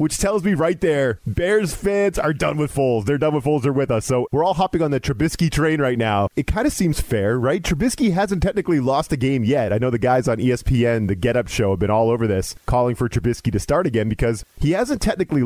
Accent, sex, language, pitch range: American, male, English, 110-150 Hz